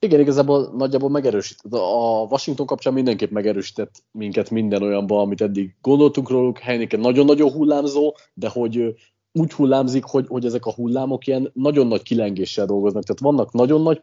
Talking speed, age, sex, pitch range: 160 wpm, 30-49, male, 110-135 Hz